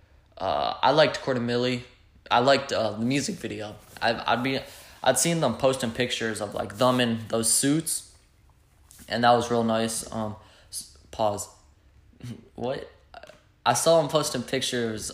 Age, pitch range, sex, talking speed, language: 10-29, 105-130 Hz, male, 145 wpm, English